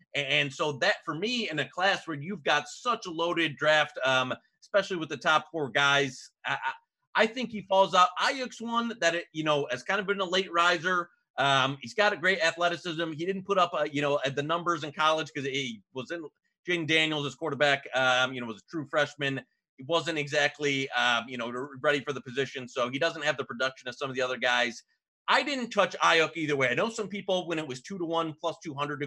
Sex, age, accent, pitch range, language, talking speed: male, 30-49, American, 140-175 Hz, English, 245 wpm